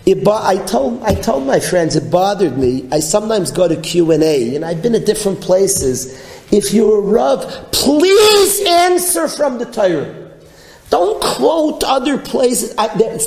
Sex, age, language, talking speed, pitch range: male, 40-59, English, 165 wpm, 160-265 Hz